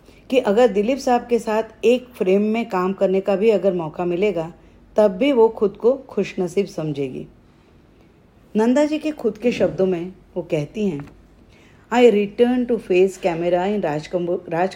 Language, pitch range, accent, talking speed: Hindi, 170-225 Hz, native, 165 wpm